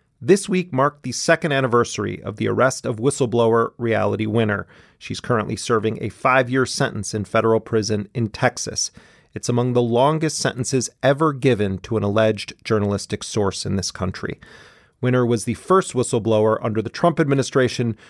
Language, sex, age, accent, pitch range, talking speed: English, male, 30-49, American, 110-140 Hz, 160 wpm